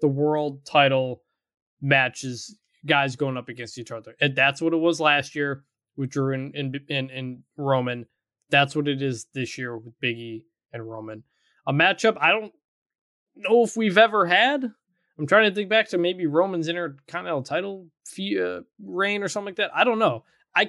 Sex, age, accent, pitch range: male, 20-39, American, 130-180 Hz